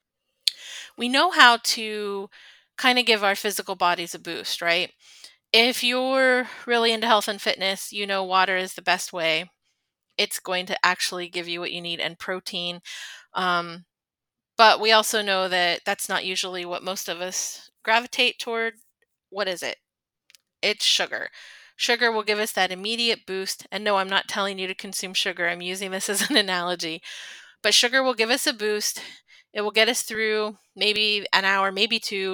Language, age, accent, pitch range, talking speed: English, 20-39, American, 180-220 Hz, 180 wpm